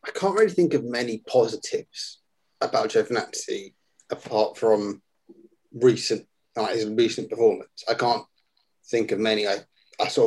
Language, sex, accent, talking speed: English, male, British, 145 wpm